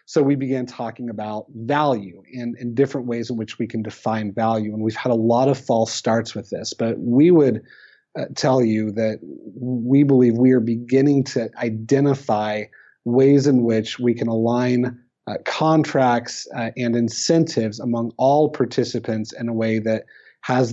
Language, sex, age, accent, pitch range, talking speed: English, male, 30-49, American, 110-130 Hz, 170 wpm